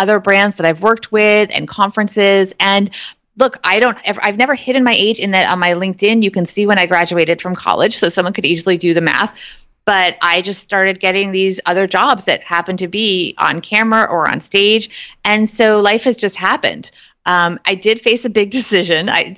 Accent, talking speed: American, 215 wpm